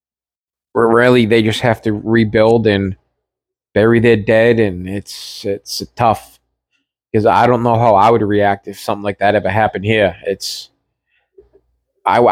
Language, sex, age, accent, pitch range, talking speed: English, male, 20-39, American, 110-125 Hz, 160 wpm